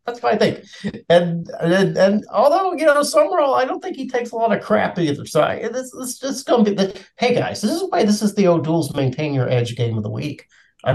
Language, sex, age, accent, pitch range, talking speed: English, male, 50-69, American, 115-170 Hz, 240 wpm